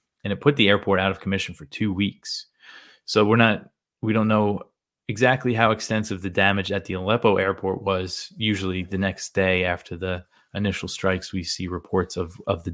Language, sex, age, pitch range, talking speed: English, male, 20-39, 95-110 Hz, 190 wpm